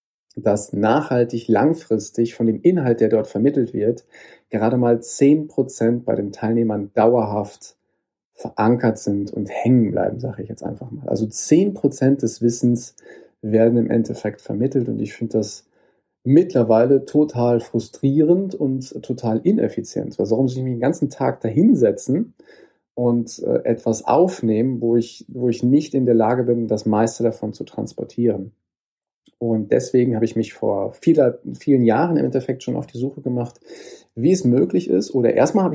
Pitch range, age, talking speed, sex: 115-135 Hz, 40-59, 155 wpm, male